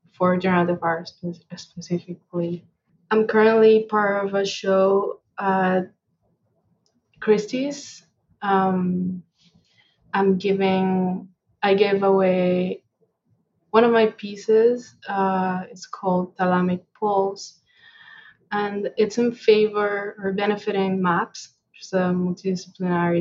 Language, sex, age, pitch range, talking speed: English, female, 20-39, 180-205 Hz, 100 wpm